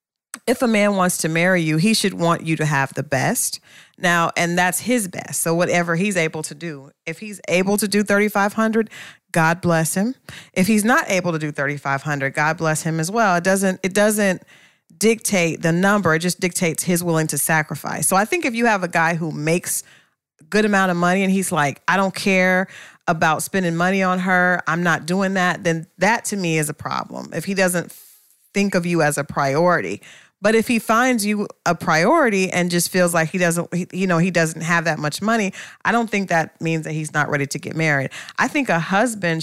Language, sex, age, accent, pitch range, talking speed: English, female, 40-59, American, 160-200 Hz, 220 wpm